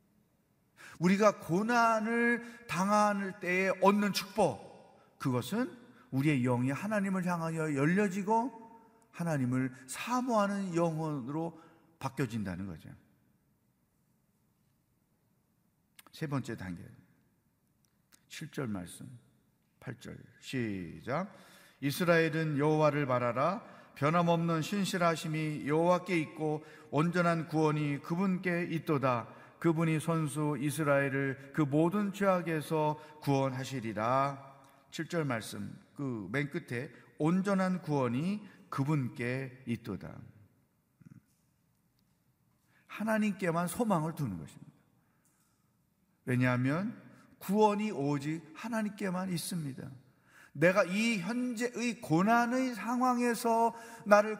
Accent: native